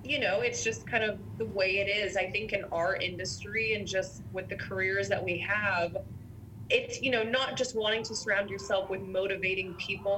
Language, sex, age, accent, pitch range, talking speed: English, female, 20-39, American, 180-225 Hz, 205 wpm